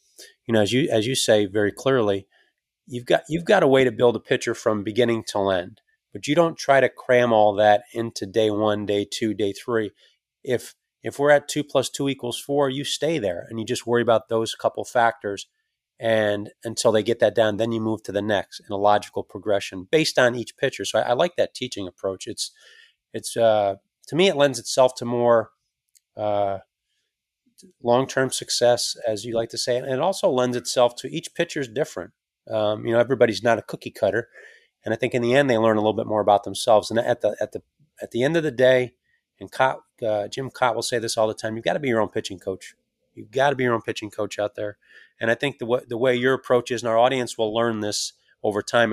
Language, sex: English, male